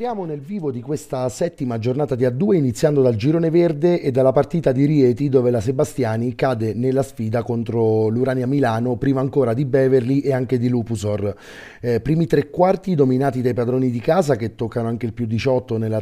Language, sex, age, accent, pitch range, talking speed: Italian, male, 30-49, native, 115-140 Hz, 190 wpm